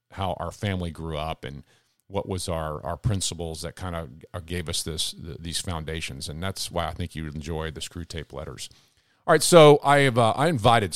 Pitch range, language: 95-145 Hz, English